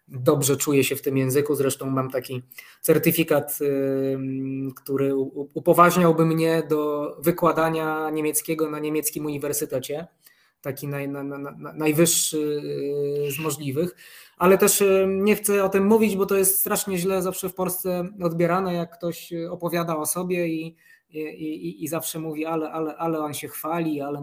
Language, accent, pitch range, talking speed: Polish, native, 145-165 Hz, 135 wpm